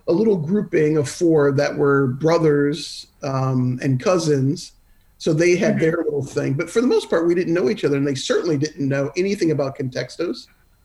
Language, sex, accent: English, male, American